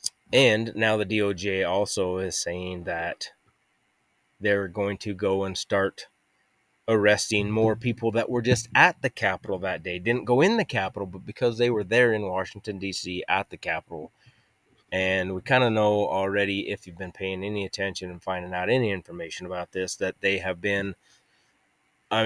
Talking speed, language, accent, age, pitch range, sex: 175 wpm, English, American, 30-49, 95-115 Hz, male